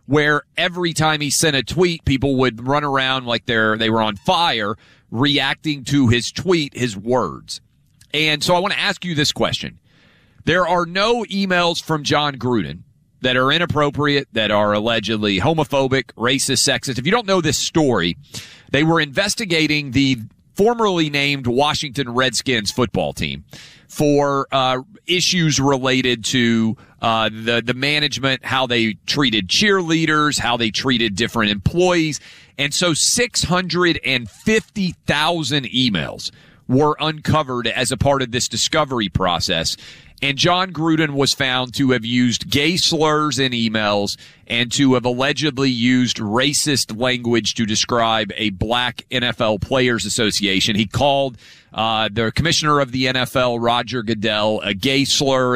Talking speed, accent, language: 145 wpm, American, English